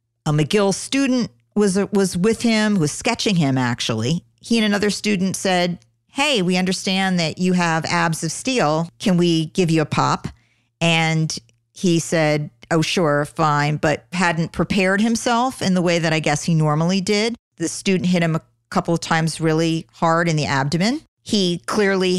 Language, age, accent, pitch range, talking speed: English, 50-69, American, 145-180 Hz, 175 wpm